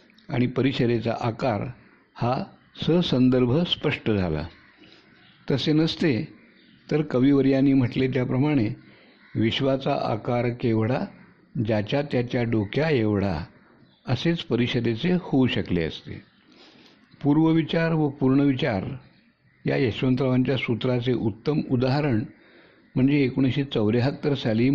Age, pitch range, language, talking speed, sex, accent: 60-79, 115-140 Hz, Hindi, 75 wpm, male, native